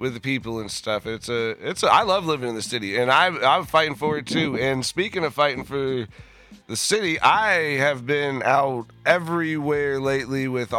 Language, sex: English, male